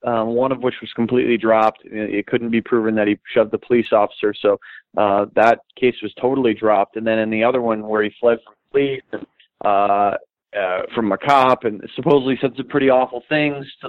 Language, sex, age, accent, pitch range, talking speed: English, male, 30-49, American, 110-130 Hz, 210 wpm